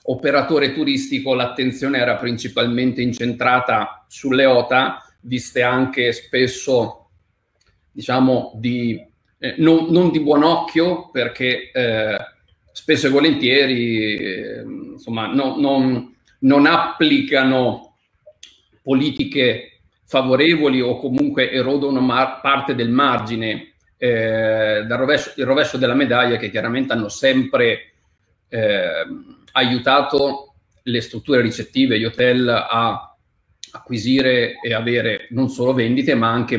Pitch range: 120-140 Hz